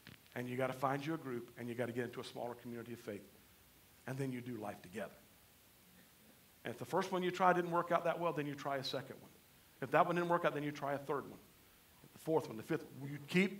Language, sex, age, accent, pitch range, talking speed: English, male, 50-69, American, 120-155 Hz, 280 wpm